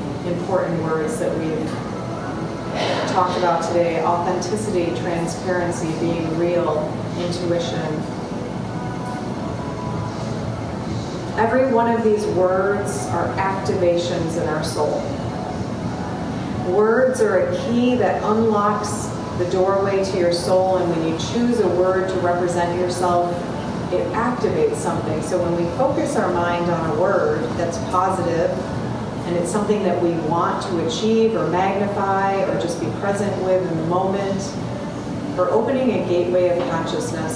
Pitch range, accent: 175-210 Hz, American